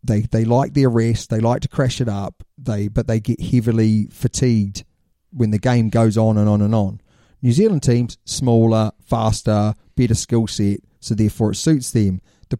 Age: 30-49